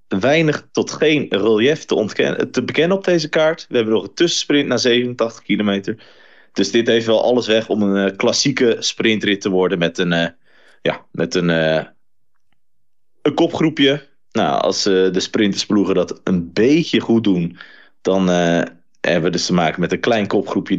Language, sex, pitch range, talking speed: Dutch, male, 105-155 Hz, 175 wpm